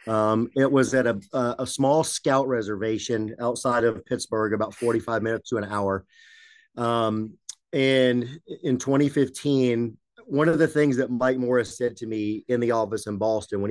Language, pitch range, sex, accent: English, 110-135 Hz, male, American